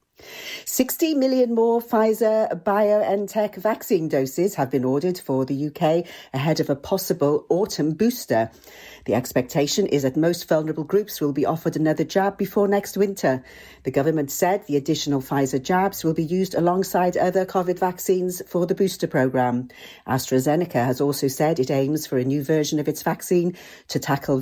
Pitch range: 135-195 Hz